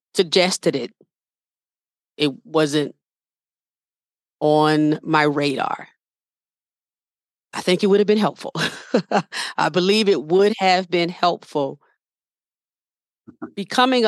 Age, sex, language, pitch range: 40-59, female, English, 160-210 Hz